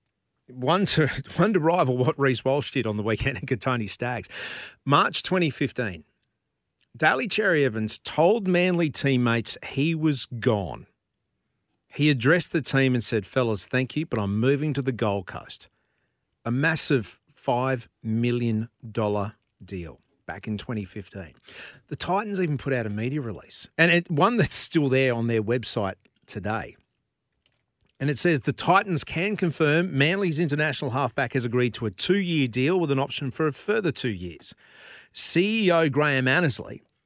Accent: Australian